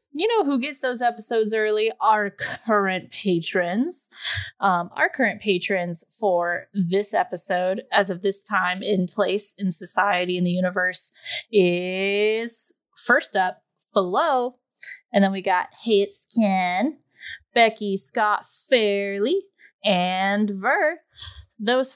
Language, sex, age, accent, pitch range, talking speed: English, female, 10-29, American, 180-240 Hz, 125 wpm